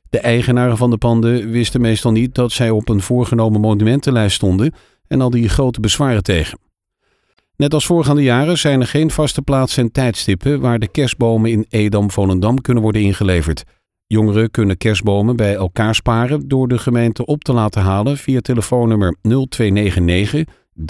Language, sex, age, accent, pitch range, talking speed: Dutch, male, 50-69, Dutch, 105-130 Hz, 160 wpm